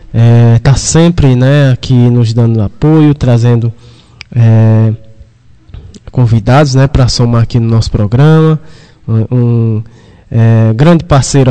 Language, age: Portuguese, 20-39